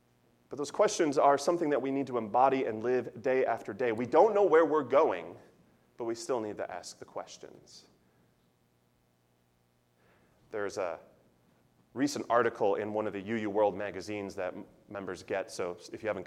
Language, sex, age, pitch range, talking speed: English, male, 30-49, 90-140 Hz, 175 wpm